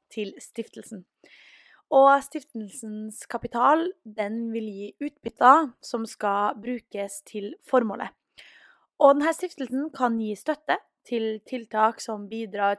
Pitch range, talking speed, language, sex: 210-255 Hz, 115 wpm, English, female